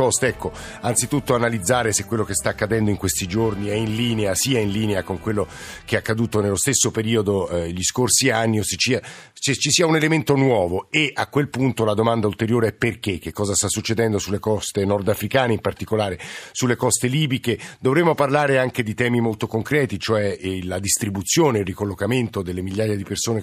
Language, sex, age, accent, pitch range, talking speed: Italian, male, 50-69, native, 105-125 Hz, 195 wpm